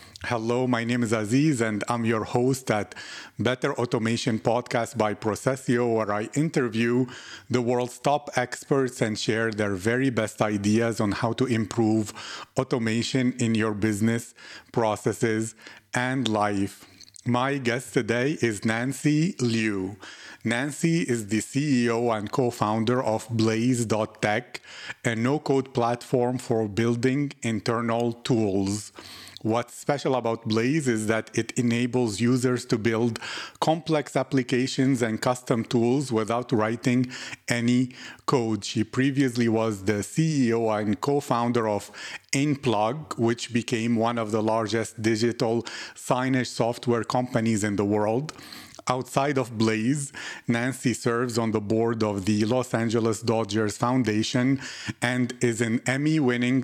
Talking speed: 130 wpm